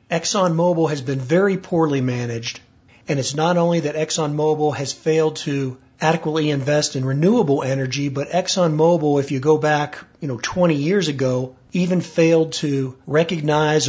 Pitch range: 135-165 Hz